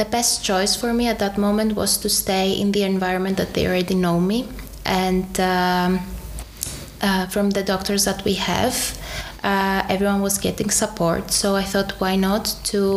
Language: Czech